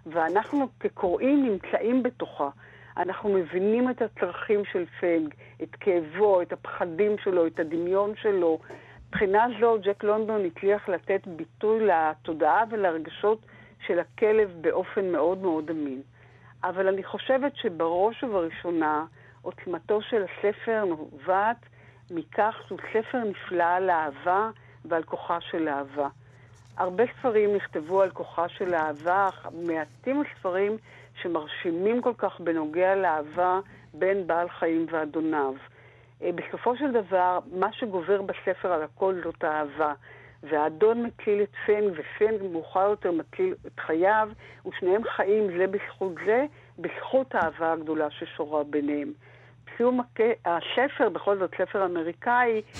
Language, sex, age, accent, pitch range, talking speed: Hebrew, female, 50-69, native, 160-215 Hz, 120 wpm